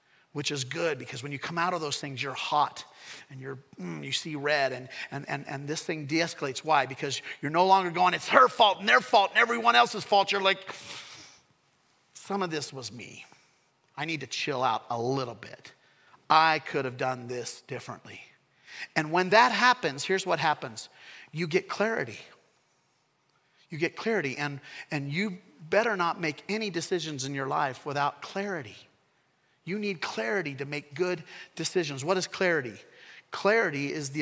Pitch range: 140-185 Hz